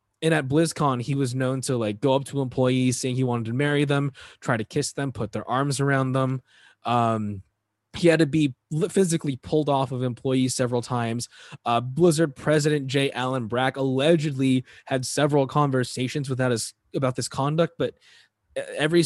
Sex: male